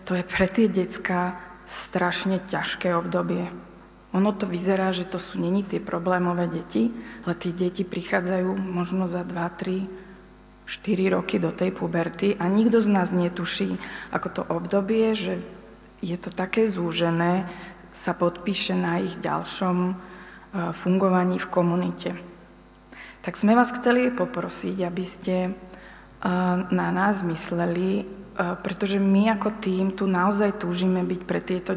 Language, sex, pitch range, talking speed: Slovak, female, 180-205 Hz, 135 wpm